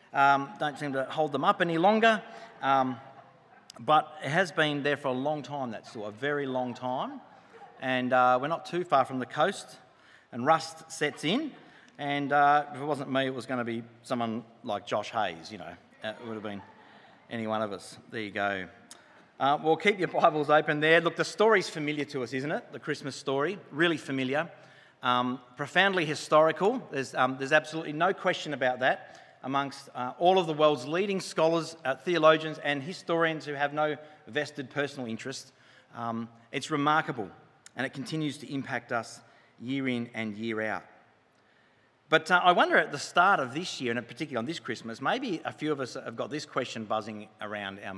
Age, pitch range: 40-59, 125-155 Hz